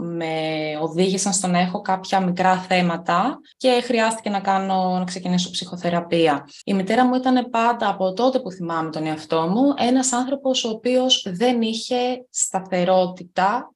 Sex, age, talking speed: female, 20-39, 150 wpm